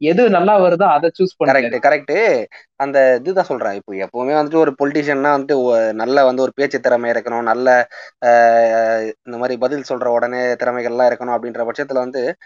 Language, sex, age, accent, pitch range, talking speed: Tamil, male, 20-39, native, 120-150 Hz, 165 wpm